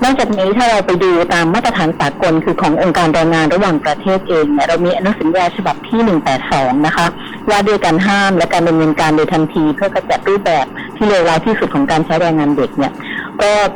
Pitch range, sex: 160-210 Hz, female